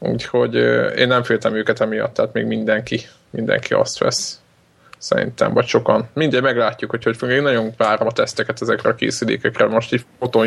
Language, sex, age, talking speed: Hungarian, male, 20-39, 165 wpm